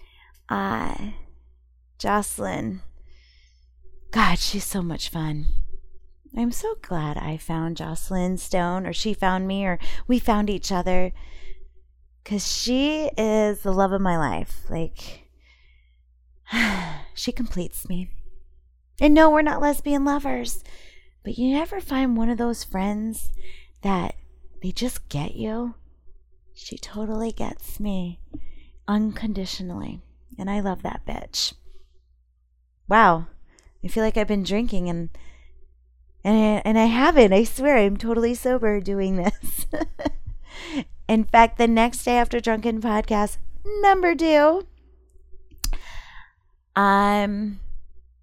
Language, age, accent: English, 20-39, American